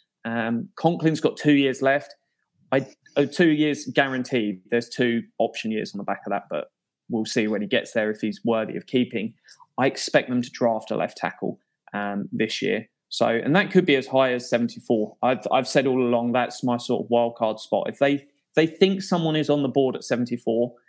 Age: 20-39